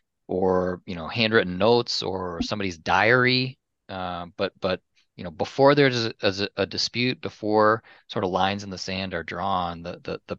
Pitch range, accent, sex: 85-105 Hz, American, male